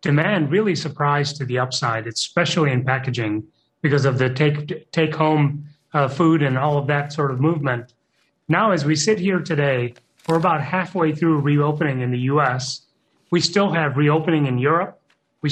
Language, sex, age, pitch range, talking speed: English, male, 30-49, 140-165 Hz, 170 wpm